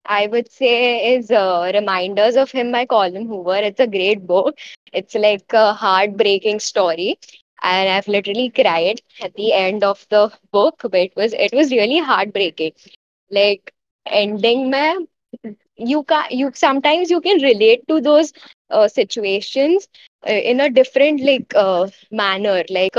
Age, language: 10-29, Hindi